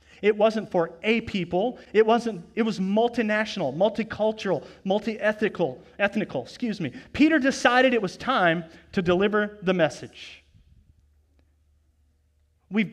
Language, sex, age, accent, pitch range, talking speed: English, male, 40-59, American, 170-235 Hz, 115 wpm